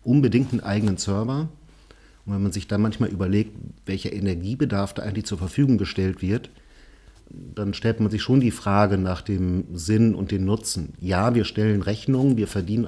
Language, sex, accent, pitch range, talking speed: German, male, German, 100-115 Hz, 175 wpm